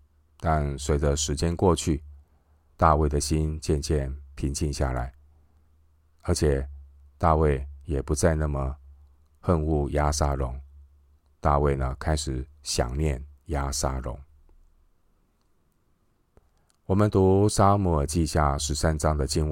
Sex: male